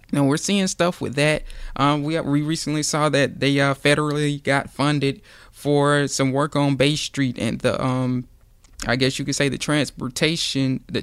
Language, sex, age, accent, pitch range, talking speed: English, male, 20-39, American, 120-140 Hz, 185 wpm